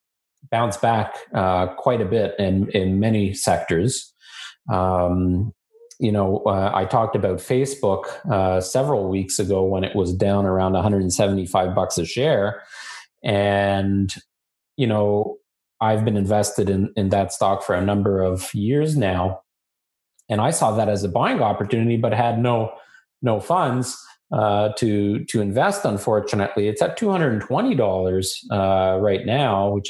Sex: male